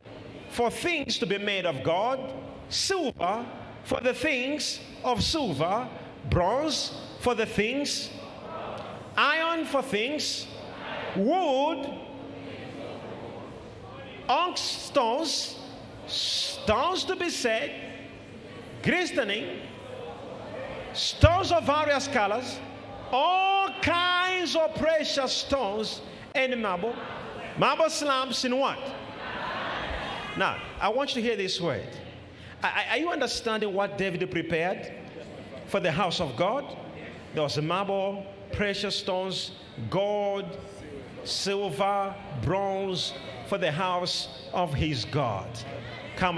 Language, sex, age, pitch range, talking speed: English, male, 50-69, 185-275 Hz, 100 wpm